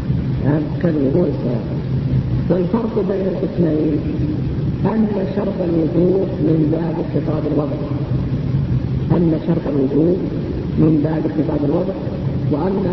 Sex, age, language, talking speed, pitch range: female, 50-69, Arabic, 95 wpm, 140-170 Hz